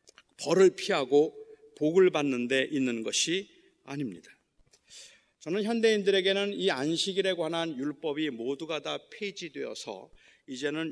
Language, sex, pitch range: Korean, male, 160-205 Hz